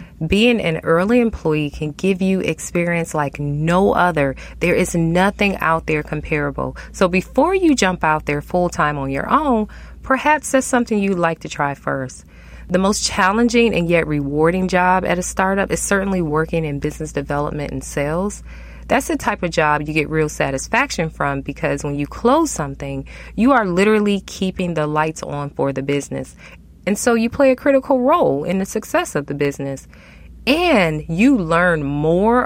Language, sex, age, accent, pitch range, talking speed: English, female, 20-39, American, 150-210 Hz, 175 wpm